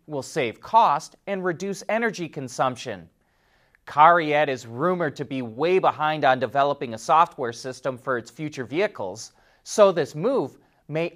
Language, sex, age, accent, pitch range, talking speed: English, male, 30-49, American, 140-195 Hz, 145 wpm